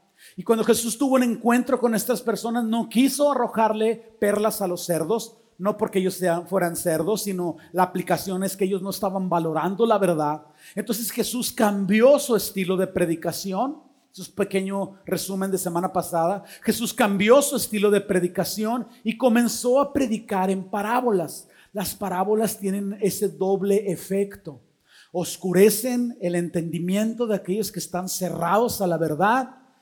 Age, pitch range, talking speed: 40-59, 180-230 Hz, 150 wpm